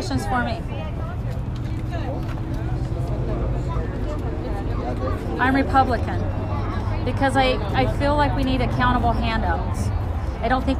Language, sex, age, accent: English, female, 30-49, American